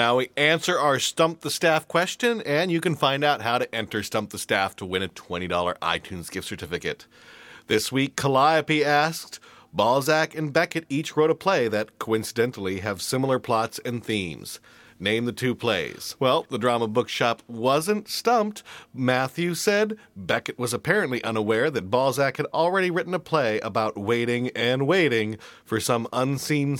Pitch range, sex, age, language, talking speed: 110-150 Hz, male, 40-59, English, 165 wpm